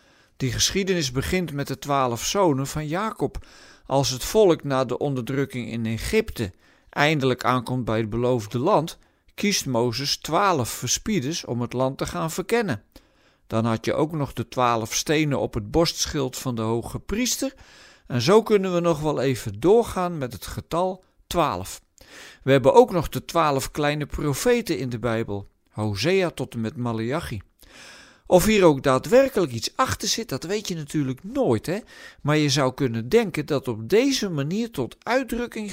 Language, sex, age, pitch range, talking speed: Dutch, male, 50-69, 125-180 Hz, 170 wpm